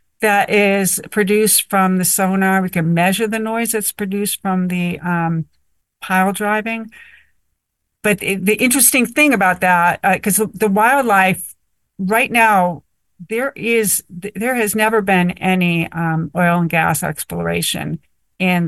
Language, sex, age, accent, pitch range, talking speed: English, female, 50-69, American, 170-205 Hz, 145 wpm